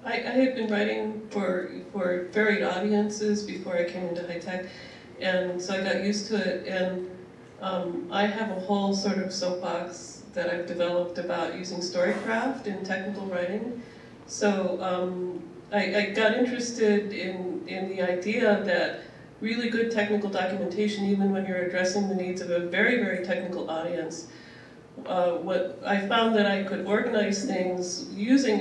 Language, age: English, 40-59